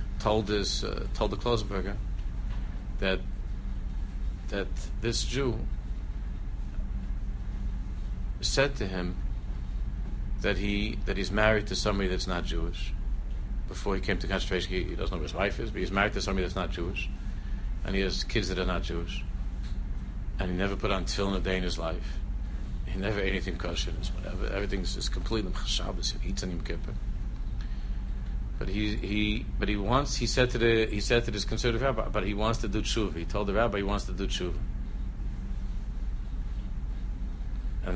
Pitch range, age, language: 90-105 Hz, 50-69, English